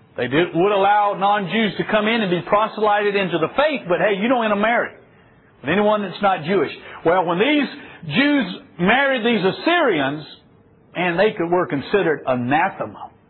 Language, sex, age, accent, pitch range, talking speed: English, male, 50-69, American, 190-285 Hz, 160 wpm